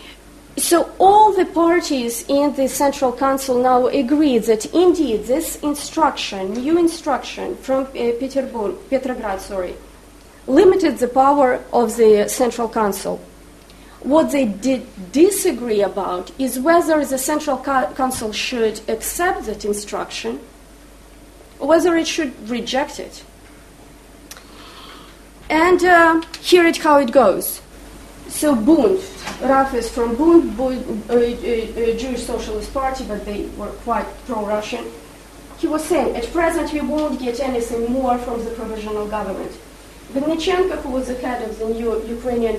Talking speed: 135 wpm